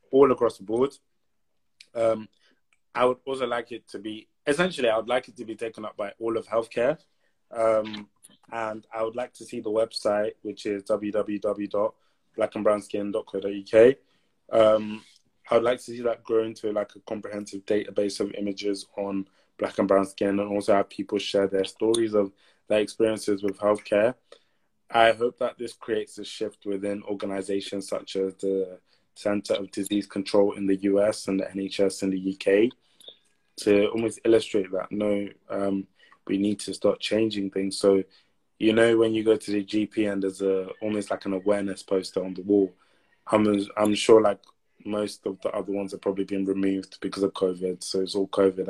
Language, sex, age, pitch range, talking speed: English, male, 20-39, 95-110 Hz, 180 wpm